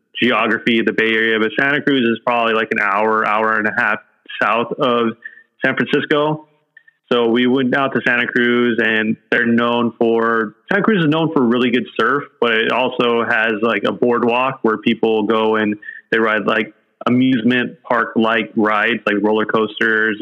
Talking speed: 180 wpm